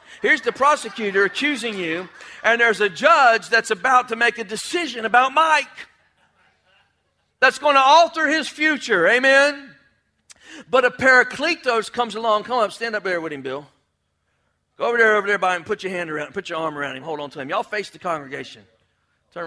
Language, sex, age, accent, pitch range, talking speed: English, male, 50-69, American, 215-285 Hz, 190 wpm